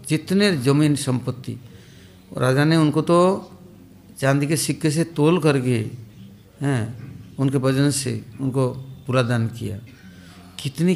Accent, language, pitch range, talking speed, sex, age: Indian, English, 125-150 Hz, 120 wpm, male, 60-79